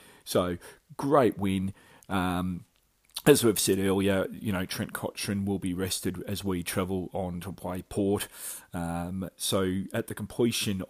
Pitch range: 90-105 Hz